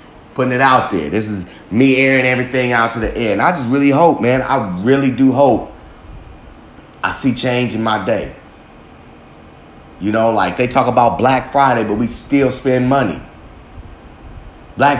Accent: American